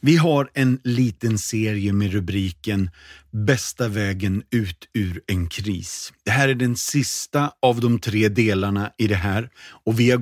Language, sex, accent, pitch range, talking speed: Swedish, male, native, 95-125 Hz, 165 wpm